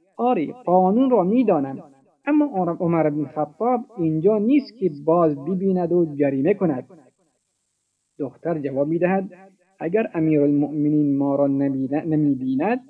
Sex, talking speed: male, 125 wpm